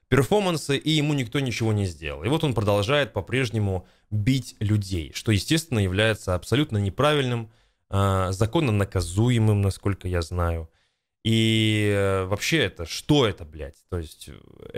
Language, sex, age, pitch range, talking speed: Russian, male, 20-39, 100-130 Hz, 130 wpm